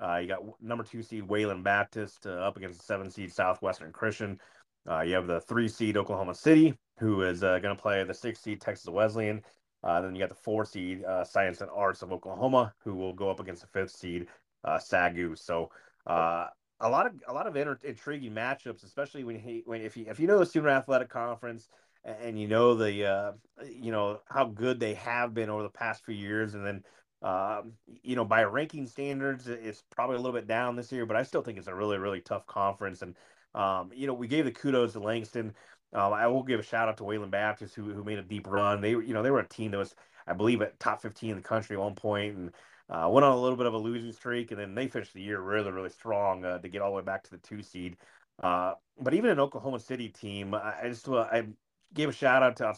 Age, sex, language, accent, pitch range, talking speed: 30-49, male, English, American, 100-120 Hz, 250 wpm